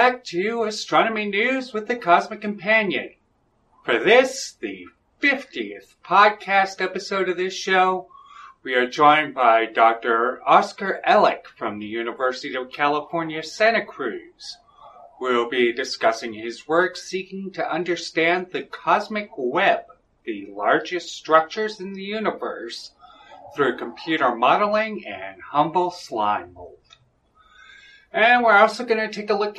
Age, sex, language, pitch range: 40-59, male, English, 145-220 Hz